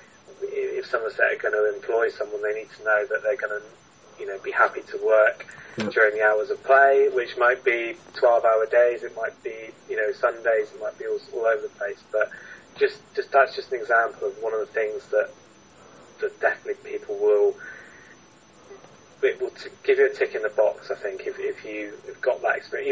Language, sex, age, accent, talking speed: English, male, 20-39, British, 215 wpm